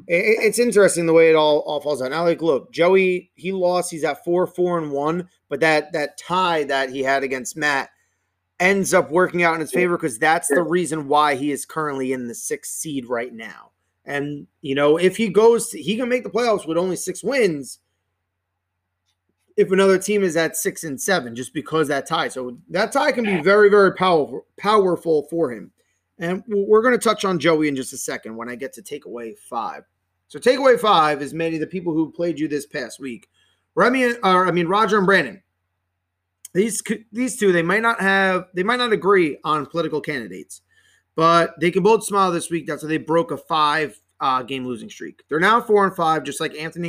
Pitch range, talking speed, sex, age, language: 135-190 Hz, 215 wpm, male, 30-49, English